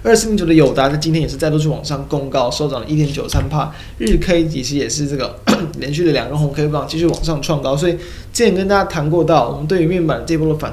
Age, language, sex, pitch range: 20-39, Chinese, male, 130-160 Hz